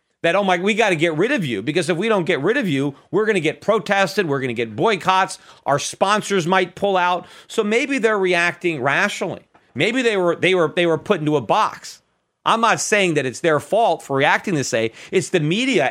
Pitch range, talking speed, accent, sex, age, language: 150-195 Hz, 240 wpm, American, male, 40-59, English